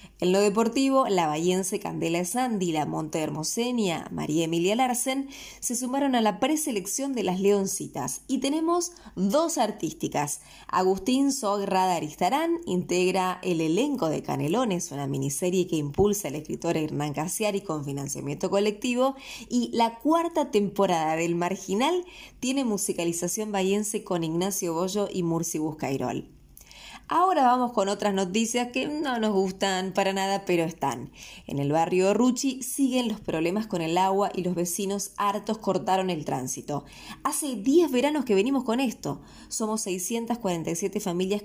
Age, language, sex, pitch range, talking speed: 20-39, Spanish, female, 175-245 Hz, 145 wpm